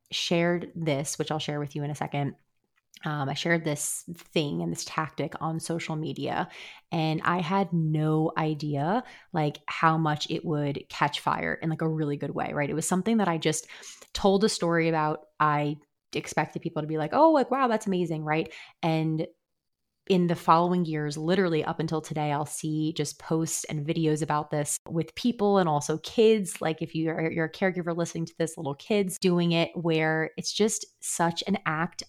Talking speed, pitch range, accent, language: 195 wpm, 150-175 Hz, American, English